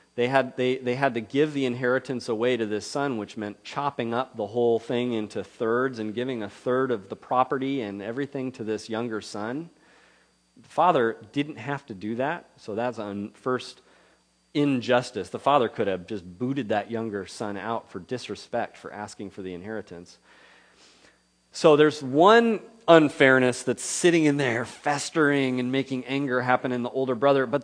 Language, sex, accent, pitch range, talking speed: English, male, American, 115-155 Hz, 175 wpm